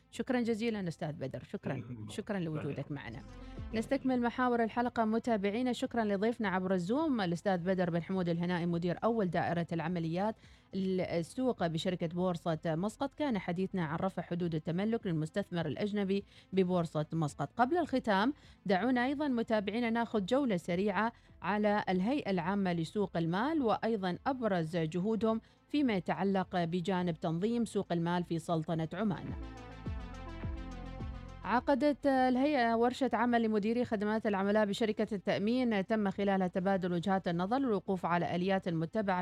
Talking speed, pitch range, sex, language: 125 wpm, 175-225 Hz, female, Arabic